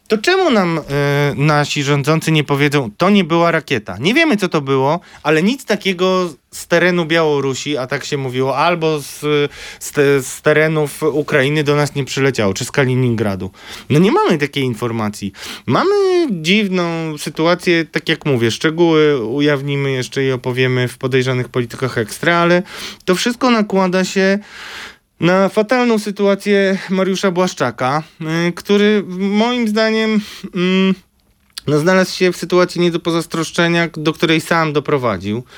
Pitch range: 135-185 Hz